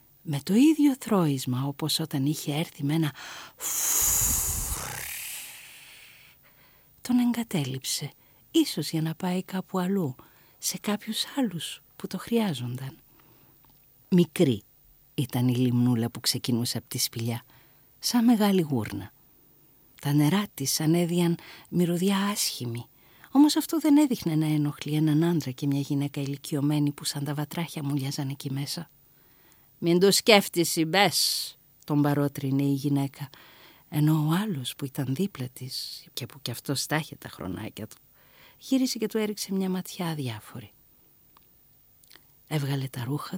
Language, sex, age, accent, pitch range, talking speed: Greek, female, 50-69, native, 130-185 Hz, 130 wpm